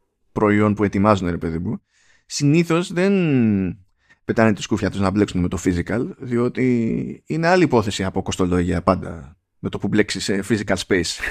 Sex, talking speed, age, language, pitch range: male, 165 wpm, 20-39, Greek, 105-140 Hz